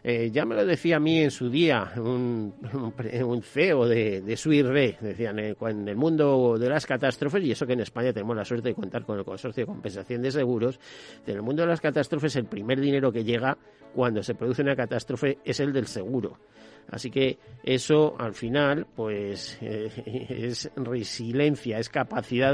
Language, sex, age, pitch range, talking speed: Spanish, male, 50-69, 120-145 Hz, 195 wpm